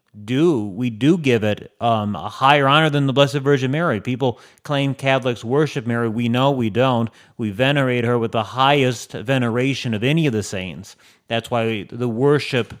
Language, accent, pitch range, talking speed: English, American, 110-135 Hz, 185 wpm